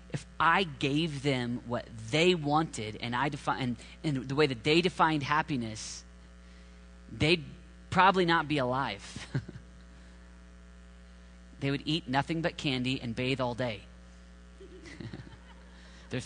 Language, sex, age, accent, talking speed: English, male, 30-49, American, 125 wpm